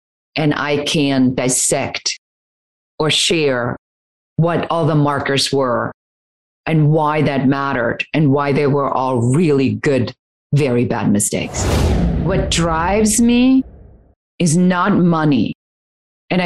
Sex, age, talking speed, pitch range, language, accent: female, 40-59, 115 wpm, 145-210 Hz, English, American